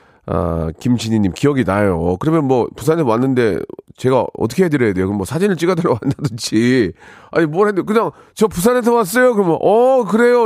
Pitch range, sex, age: 115-175 Hz, male, 40-59